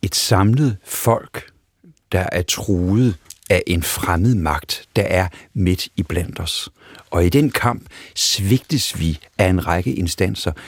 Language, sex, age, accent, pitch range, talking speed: Danish, male, 60-79, native, 90-105 Hz, 140 wpm